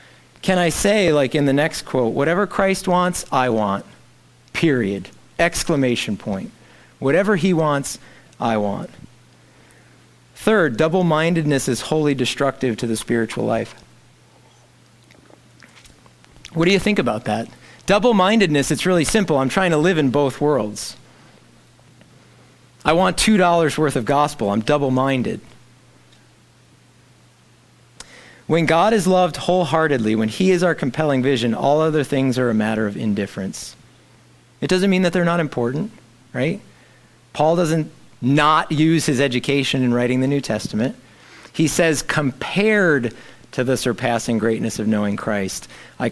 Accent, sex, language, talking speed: American, male, English, 135 wpm